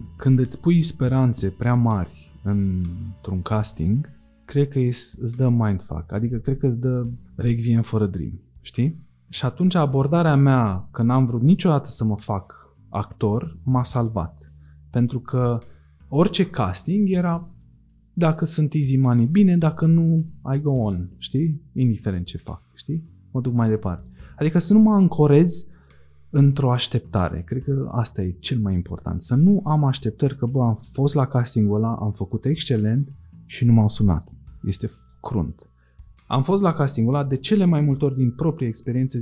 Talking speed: 160 wpm